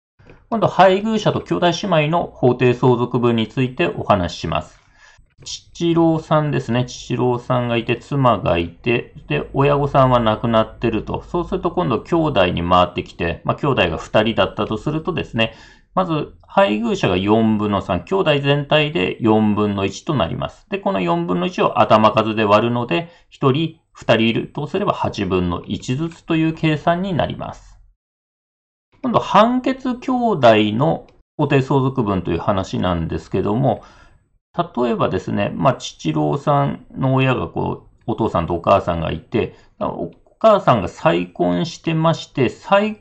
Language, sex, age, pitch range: Japanese, male, 40-59, 105-170 Hz